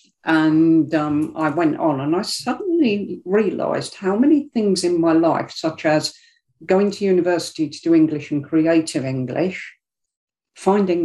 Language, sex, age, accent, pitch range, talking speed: English, female, 50-69, British, 140-165 Hz, 145 wpm